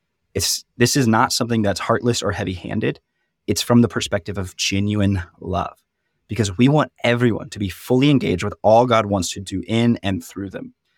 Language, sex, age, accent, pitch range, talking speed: English, male, 20-39, American, 100-120 Hz, 180 wpm